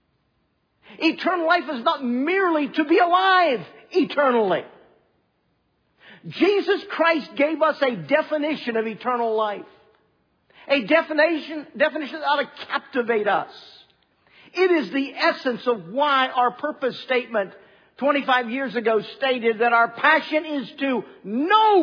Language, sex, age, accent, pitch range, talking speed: English, male, 50-69, American, 220-315 Hz, 125 wpm